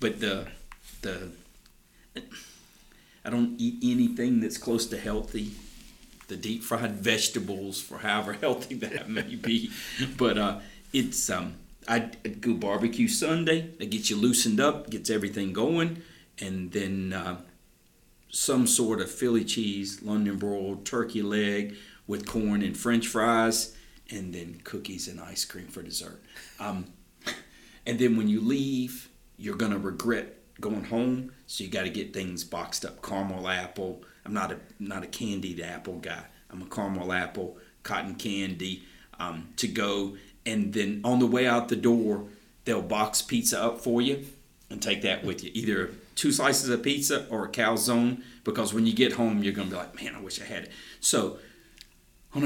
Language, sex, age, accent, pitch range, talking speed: English, male, 50-69, American, 100-125 Hz, 170 wpm